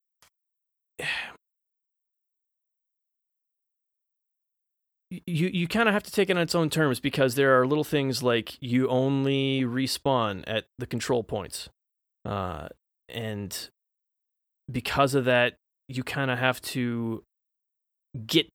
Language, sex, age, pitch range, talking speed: English, male, 30-49, 115-145 Hz, 115 wpm